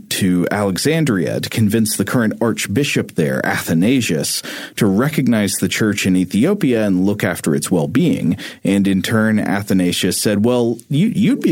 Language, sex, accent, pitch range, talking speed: English, male, American, 95-115 Hz, 150 wpm